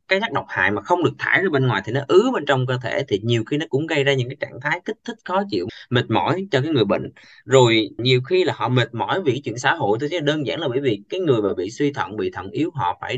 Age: 20-39